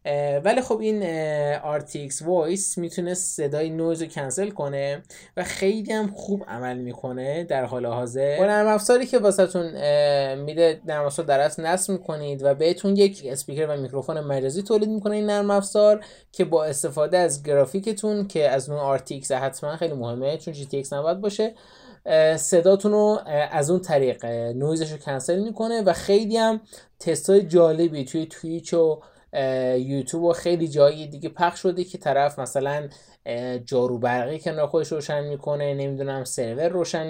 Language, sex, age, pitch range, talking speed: Persian, male, 20-39, 145-190 Hz, 150 wpm